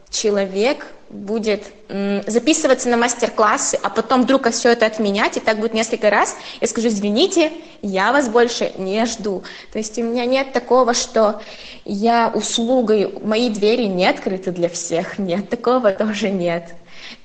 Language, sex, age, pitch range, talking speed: Russian, female, 20-39, 205-245 Hz, 155 wpm